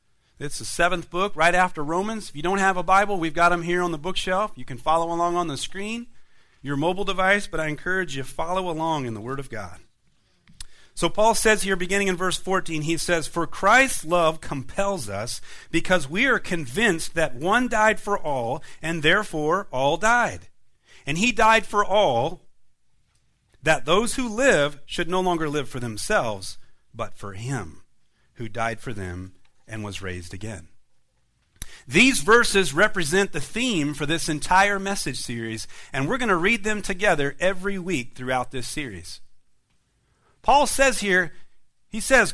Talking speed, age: 175 wpm, 40-59